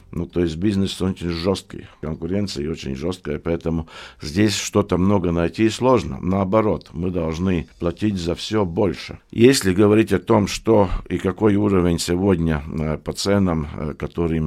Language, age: Russian, 50-69